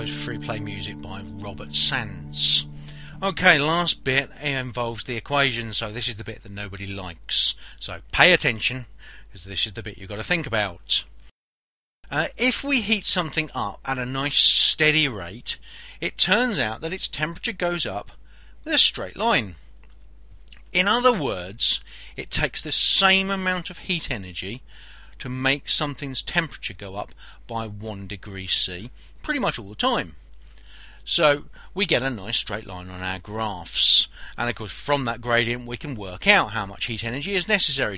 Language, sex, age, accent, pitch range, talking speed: English, male, 40-59, British, 95-150 Hz, 170 wpm